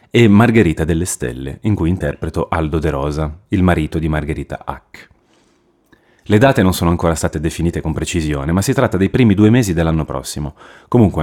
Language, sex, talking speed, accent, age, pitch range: Italian, male, 180 wpm, native, 30-49, 75-95 Hz